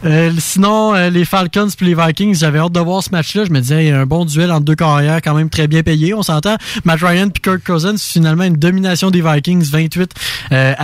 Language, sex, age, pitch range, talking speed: French, male, 20-39, 145-190 Hz, 250 wpm